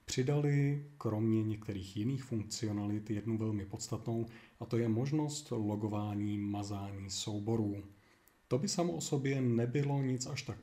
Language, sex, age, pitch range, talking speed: Czech, male, 30-49, 110-125 Hz, 135 wpm